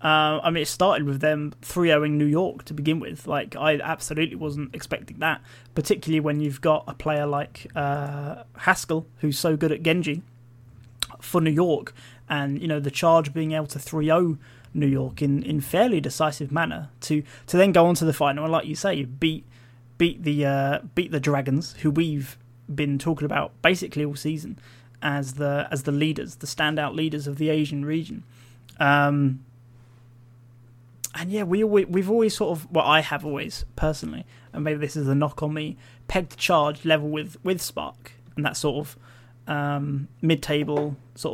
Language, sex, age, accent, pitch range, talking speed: English, male, 20-39, British, 135-155 Hz, 190 wpm